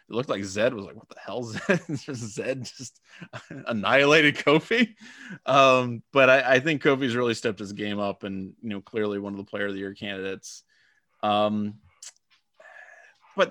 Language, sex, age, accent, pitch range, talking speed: English, male, 30-49, American, 105-145 Hz, 180 wpm